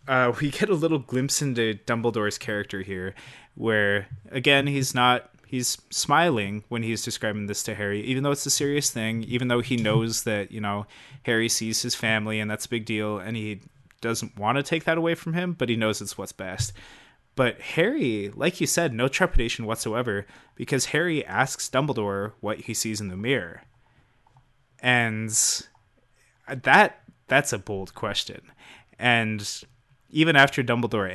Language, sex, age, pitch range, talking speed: English, male, 20-39, 105-130 Hz, 170 wpm